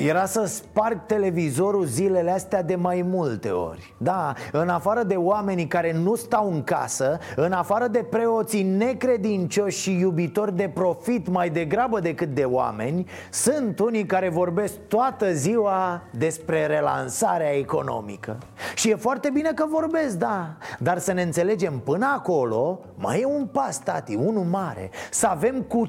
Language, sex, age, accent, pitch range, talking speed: Romanian, male, 30-49, native, 160-215 Hz, 155 wpm